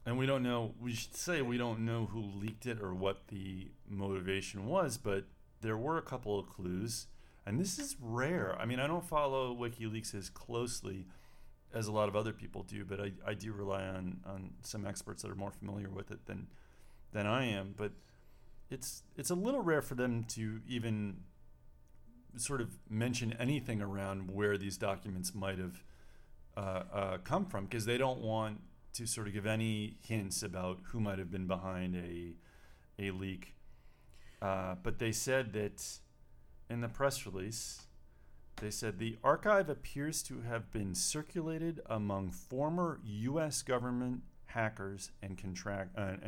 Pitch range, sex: 95-120 Hz, male